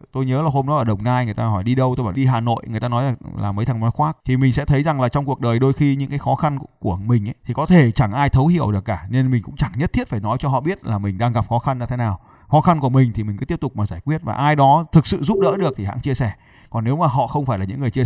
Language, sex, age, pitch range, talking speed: Vietnamese, male, 20-39, 120-155 Hz, 355 wpm